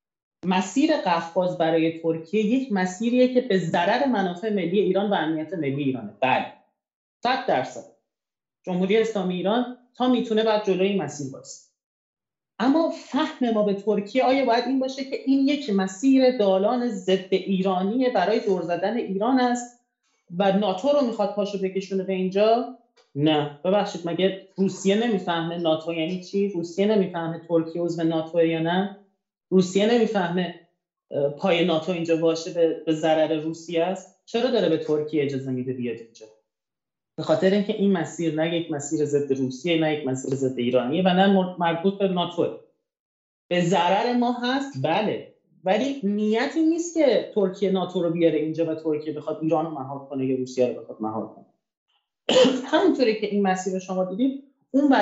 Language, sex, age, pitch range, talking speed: Persian, male, 30-49, 165-230 Hz, 160 wpm